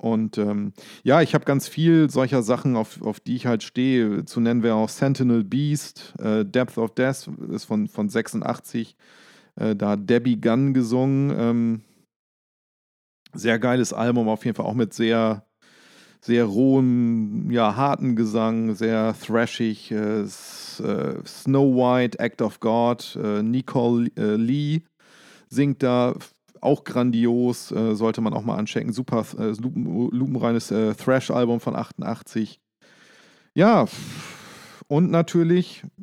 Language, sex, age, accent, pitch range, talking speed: German, male, 40-59, German, 115-140 Hz, 140 wpm